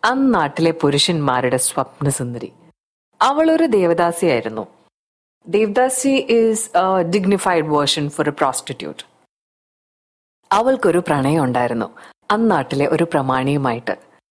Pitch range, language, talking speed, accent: 140-225 Hz, Malayalam, 75 wpm, native